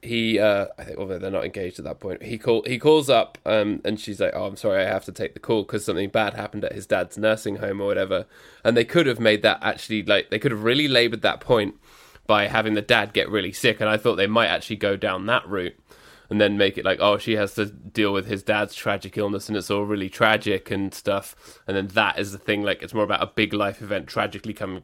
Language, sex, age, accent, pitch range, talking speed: English, male, 20-39, British, 100-110 Hz, 270 wpm